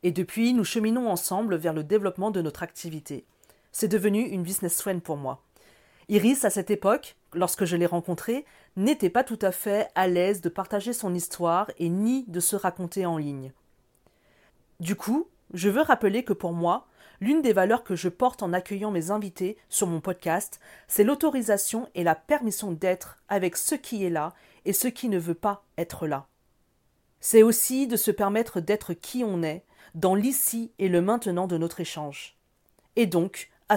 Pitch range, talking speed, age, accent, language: 175-220 Hz, 185 wpm, 40-59, French, French